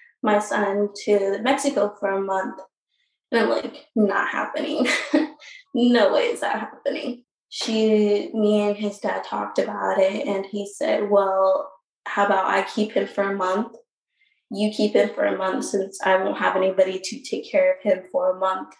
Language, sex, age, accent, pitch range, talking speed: English, female, 20-39, American, 185-240 Hz, 180 wpm